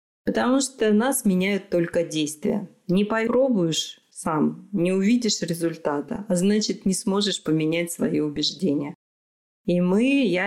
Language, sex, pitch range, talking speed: Russian, female, 155-215 Hz, 125 wpm